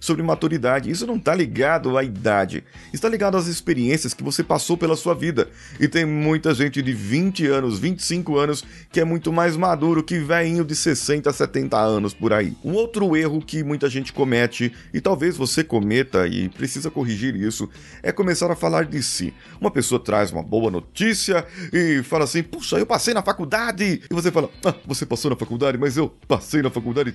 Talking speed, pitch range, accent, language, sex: 195 wpm, 125-170 Hz, Brazilian, Portuguese, male